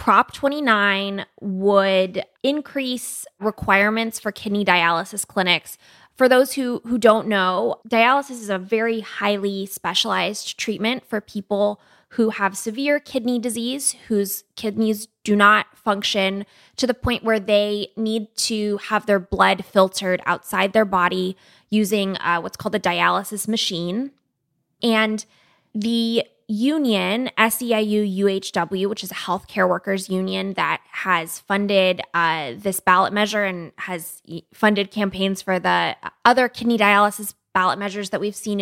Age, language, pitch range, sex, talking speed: 20-39, English, 190-230 Hz, female, 135 wpm